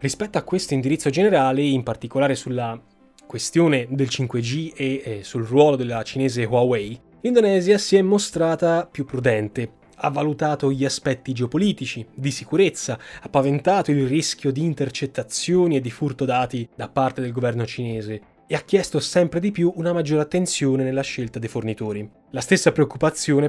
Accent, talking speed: native, 155 wpm